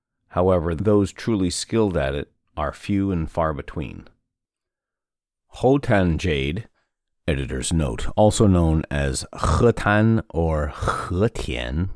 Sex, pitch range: male, 80-105 Hz